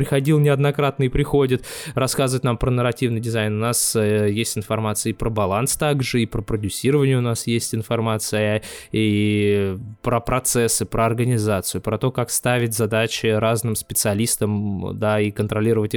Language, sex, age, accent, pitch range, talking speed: Russian, male, 20-39, native, 105-125 Hz, 145 wpm